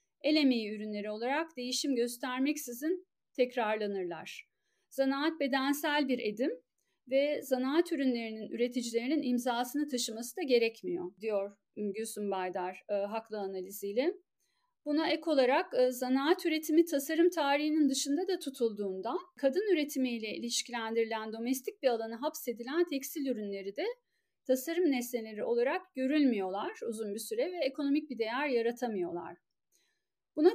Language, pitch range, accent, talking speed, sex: Turkish, 235-330 Hz, native, 115 wpm, female